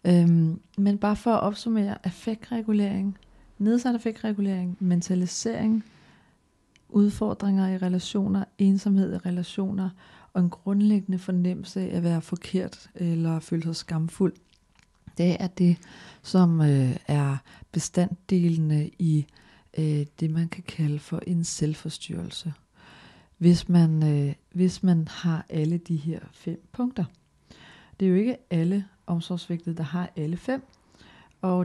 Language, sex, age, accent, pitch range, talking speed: Danish, female, 40-59, native, 160-190 Hz, 125 wpm